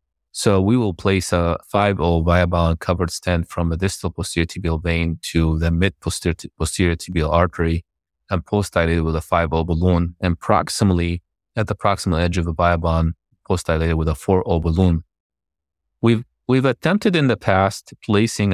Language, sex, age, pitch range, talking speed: English, male, 30-49, 80-95 Hz, 160 wpm